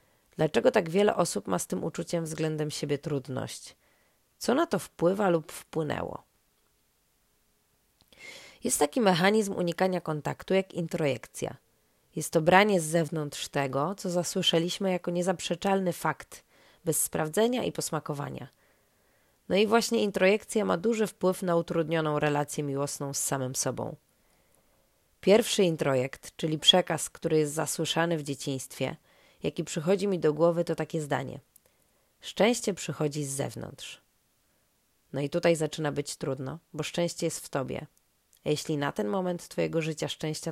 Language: Polish